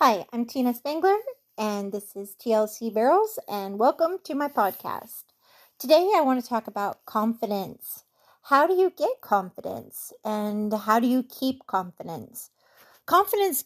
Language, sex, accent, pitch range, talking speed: English, female, American, 205-270 Hz, 145 wpm